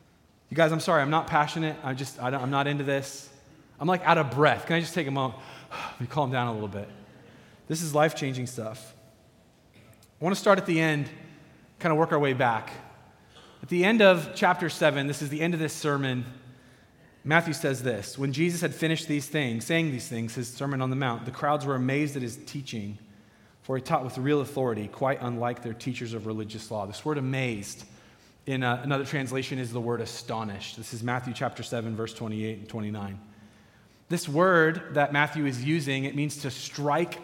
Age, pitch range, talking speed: 30-49, 120-155 Hz, 205 wpm